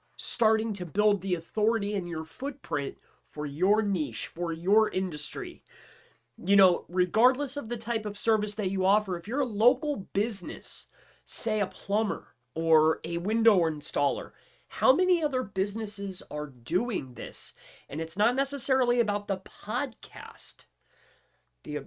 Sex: male